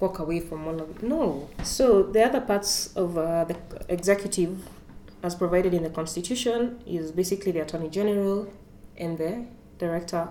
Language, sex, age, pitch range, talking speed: English, female, 20-39, 170-205 Hz, 165 wpm